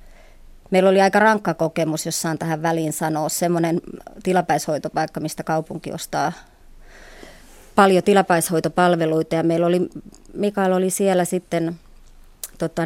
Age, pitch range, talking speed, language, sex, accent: 30-49, 160-180 Hz, 115 wpm, Finnish, male, native